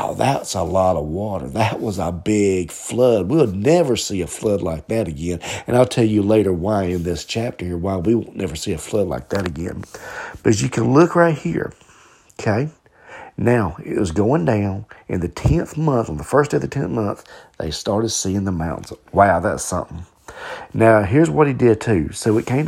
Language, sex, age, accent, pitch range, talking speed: English, male, 40-59, American, 90-115 Hz, 210 wpm